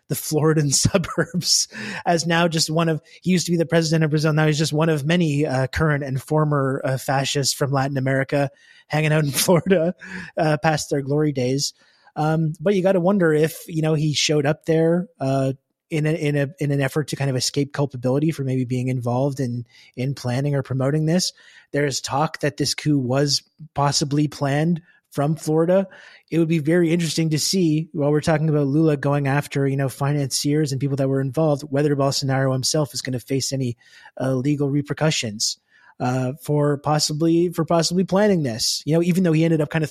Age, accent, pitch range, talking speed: 30-49, American, 135-160 Hz, 205 wpm